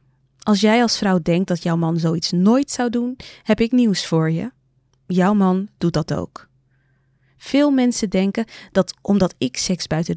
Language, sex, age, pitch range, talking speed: Dutch, female, 20-39, 150-220 Hz, 175 wpm